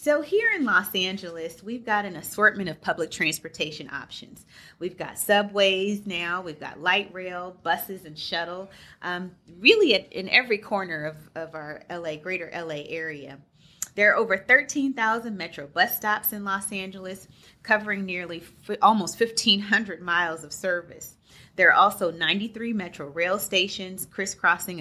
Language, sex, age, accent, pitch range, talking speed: English, female, 30-49, American, 165-205 Hz, 150 wpm